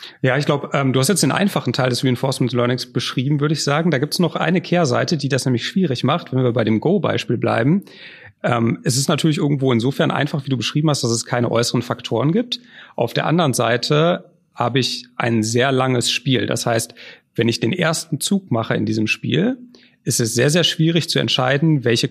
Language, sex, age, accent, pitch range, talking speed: German, male, 40-59, German, 120-160 Hz, 215 wpm